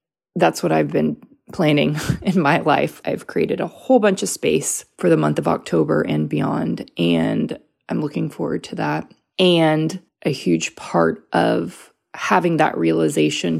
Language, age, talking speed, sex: English, 20-39, 160 wpm, female